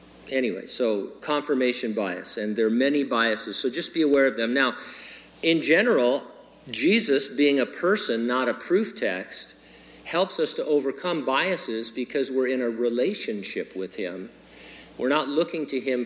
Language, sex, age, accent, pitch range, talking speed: English, male, 50-69, American, 120-165 Hz, 160 wpm